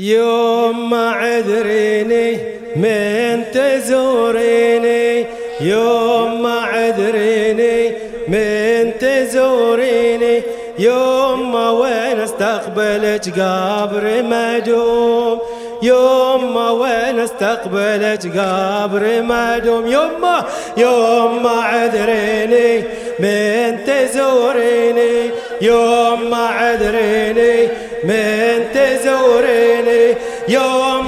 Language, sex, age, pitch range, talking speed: English, male, 30-49, 225-245 Hz, 35 wpm